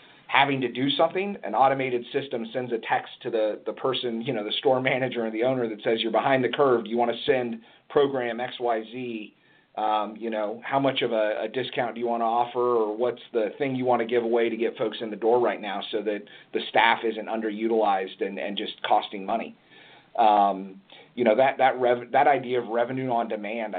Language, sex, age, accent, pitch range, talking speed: English, male, 40-59, American, 105-125 Hz, 220 wpm